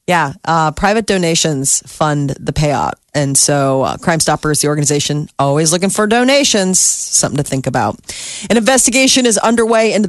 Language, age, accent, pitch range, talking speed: English, 30-49, American, 150-195 Hz, 160 wpm